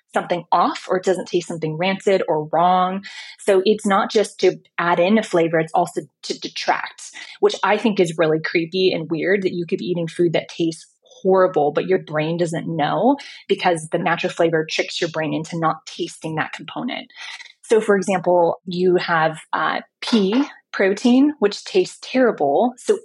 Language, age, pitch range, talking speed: English, 20-39, 170-230 Hz, 180 wpm